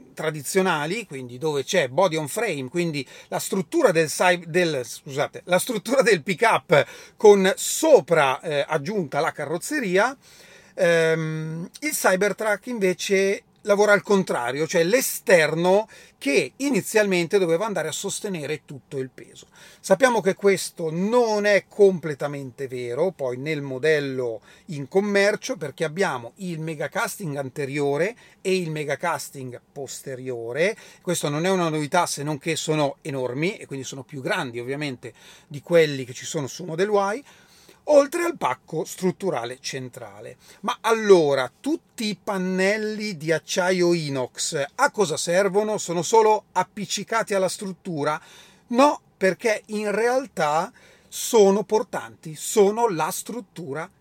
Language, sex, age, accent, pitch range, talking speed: Italian, male, 30-49, native, 150-205 Hz, 130 wpm